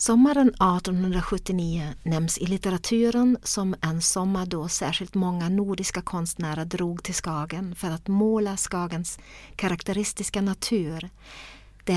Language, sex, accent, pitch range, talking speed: Swedish, female, native, 180-210 Hz, 115 wpm